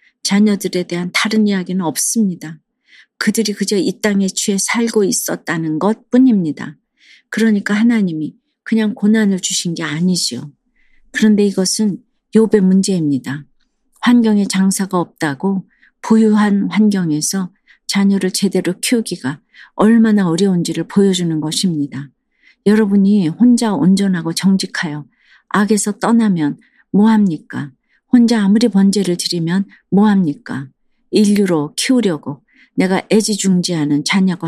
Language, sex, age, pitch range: Korean, female, 40-59, 165-210 Hz